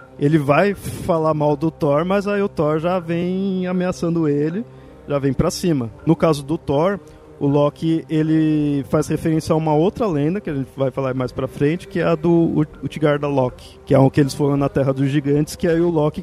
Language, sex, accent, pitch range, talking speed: Portuguese, male, Brazilian, 140-170 Hz, 220 wpm